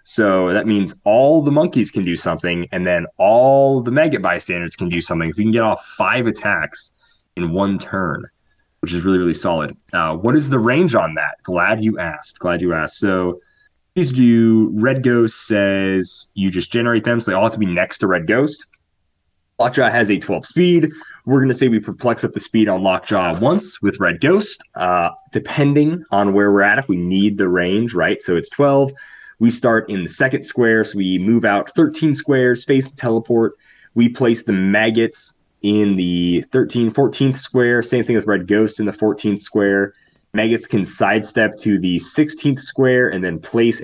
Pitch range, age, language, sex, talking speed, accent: 95-125 Hz, 20-39, English, male, 195 wpm, American